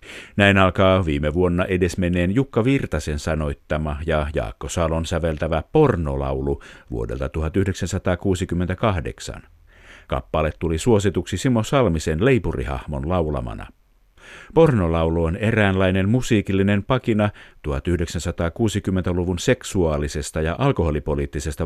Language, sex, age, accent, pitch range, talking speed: Finnish, male, 50-69, native, 80-100 Hz, 90 wpm